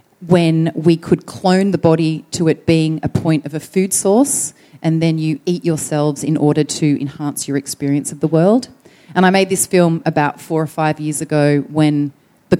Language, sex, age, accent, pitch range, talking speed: English, female, 30-49, Australian, 145-165 Hz, 200 wpm